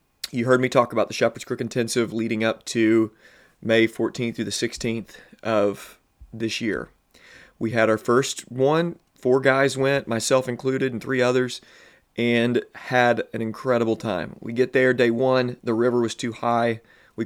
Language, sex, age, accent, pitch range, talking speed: English, male, 30-49, American, 110-125 Hz, 170 wpm